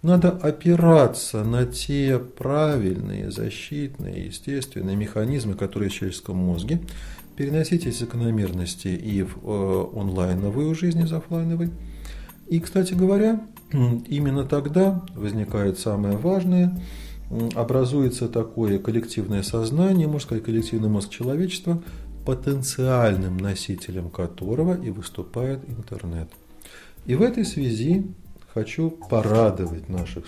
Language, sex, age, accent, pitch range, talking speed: Russian, male, 40-59, native, 95-145 Hz, 100 wpm